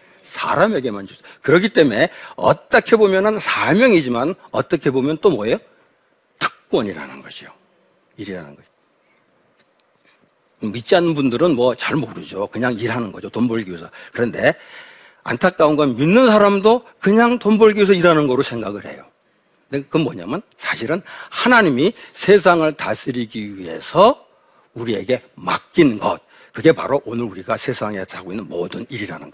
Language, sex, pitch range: Korean, male, 120-180 Hz